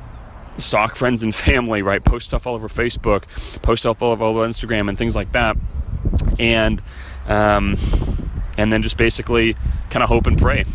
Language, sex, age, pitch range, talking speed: English, male, 30-49, 90-115 Hz, 165 wpm